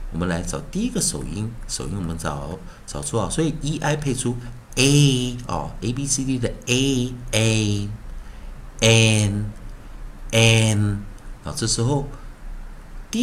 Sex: male